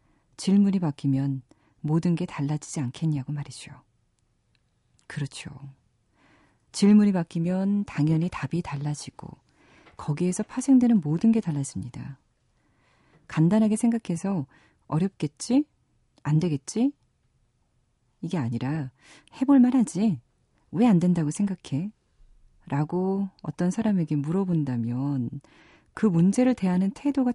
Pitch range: 140-190 Hz